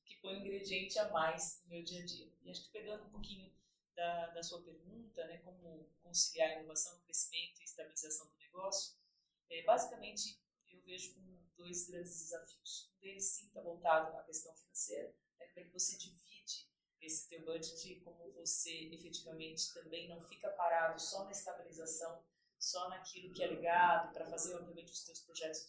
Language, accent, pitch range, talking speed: Portuguese, Brazilian, 160-190 Hz, 175 wpm